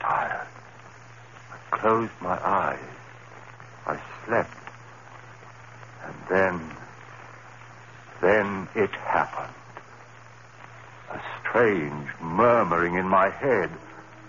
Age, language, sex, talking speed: 60-79, English, male, 70 wpm